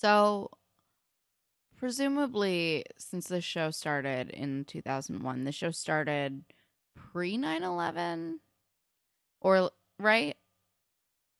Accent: American